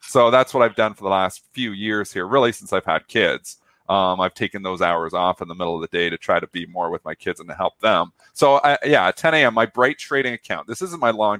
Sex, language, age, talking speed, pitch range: male, English, 30-49, 280 wpm, 95-130 Hz